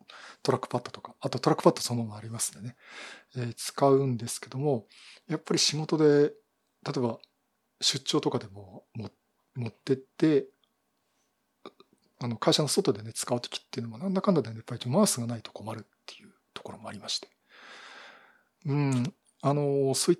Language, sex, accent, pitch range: Japanese, male, native, 125-165 Hz